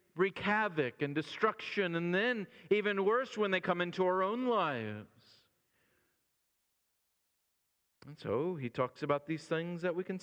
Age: 50-69